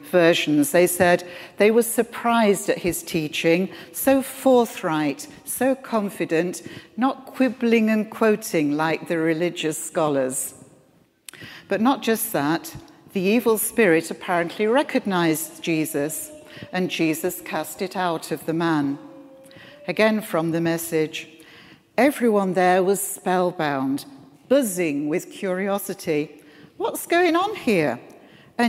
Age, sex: 60-79, female